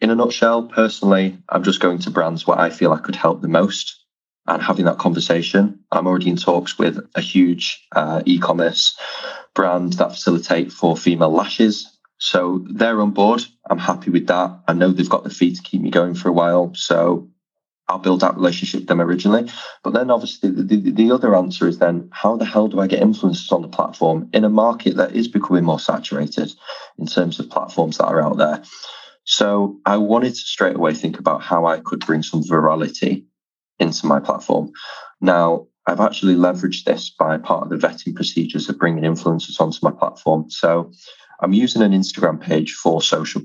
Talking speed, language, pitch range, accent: 200 wpm, English, 85-105 Hz, British